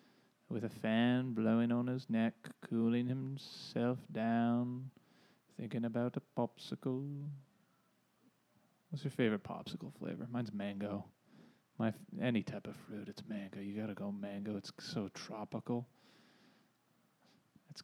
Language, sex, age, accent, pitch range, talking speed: English, male, 30-49, American, 105-125 Hz, 130 wpm